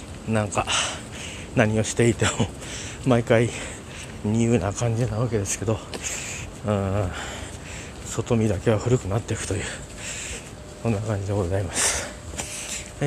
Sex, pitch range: male, 95-130 Hz